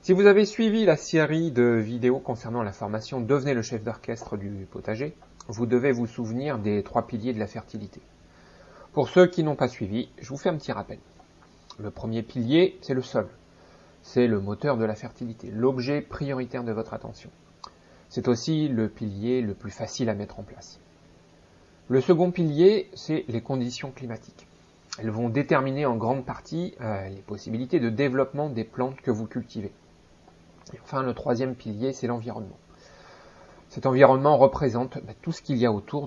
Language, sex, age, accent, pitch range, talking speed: French, male, 30-49, French, 110-140 Hz, 175 wpm